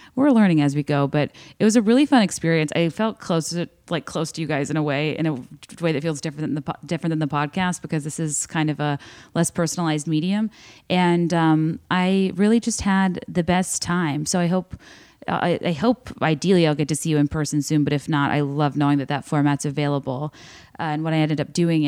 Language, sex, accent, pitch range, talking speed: English, female, American, 145-170 Hz, 240 wpm